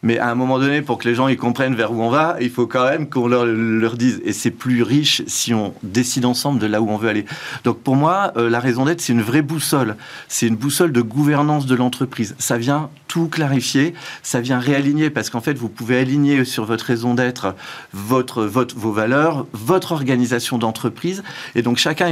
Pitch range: 115-145 Hz